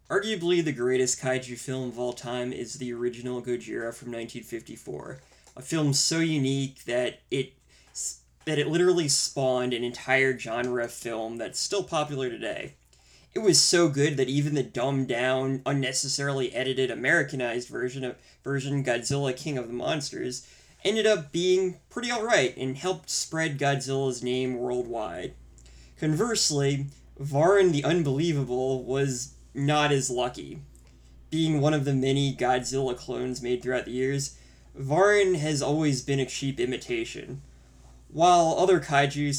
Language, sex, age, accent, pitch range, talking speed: English, male, 20-39, American, 125-145 Hz, 140 wpm